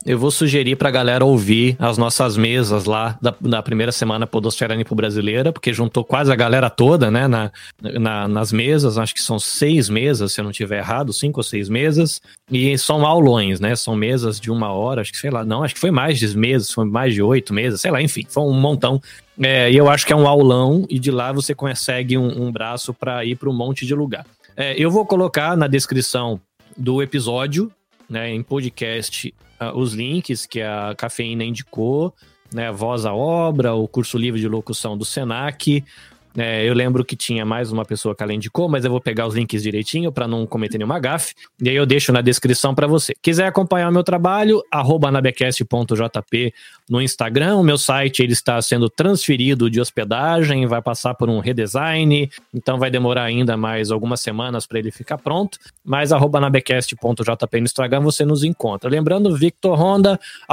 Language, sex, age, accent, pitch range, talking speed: Portuguese, male, 20-39, Brazilian, 115-145 Hz, 195 wpm